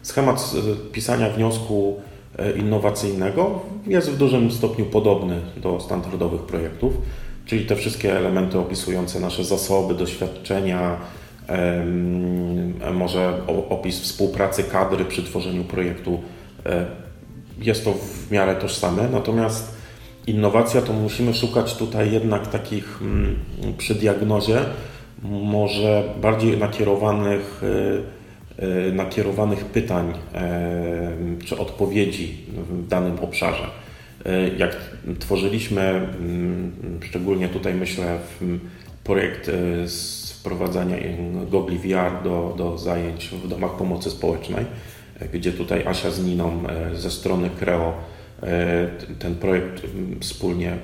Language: Polish